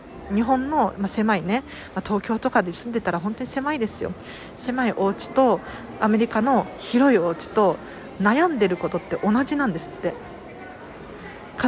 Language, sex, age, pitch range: Japanese, female, 40-59, 190-265 Hz